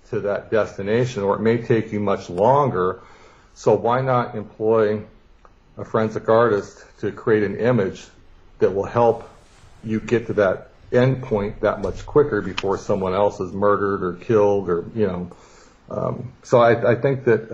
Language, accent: English, American